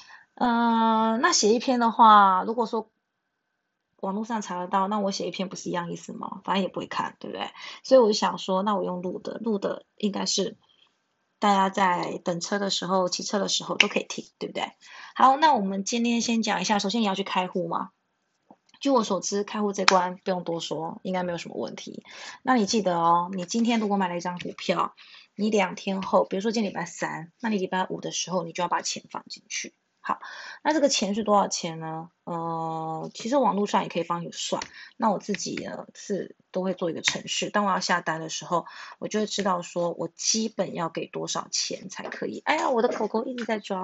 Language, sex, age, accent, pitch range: Chinese, female, 20-39, native, 185-230 Hz